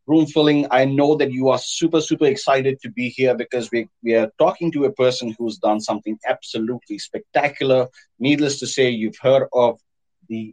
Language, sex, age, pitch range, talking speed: English, male, 30-49, 105-135 Hz, 190 wpm